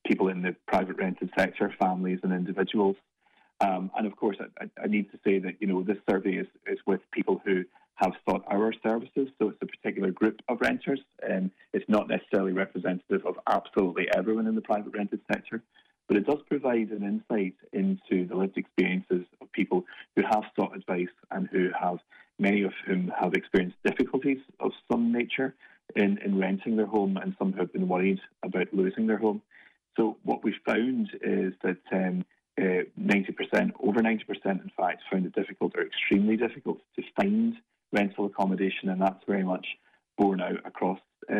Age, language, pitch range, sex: 30-49, English, 95-115 Hz, male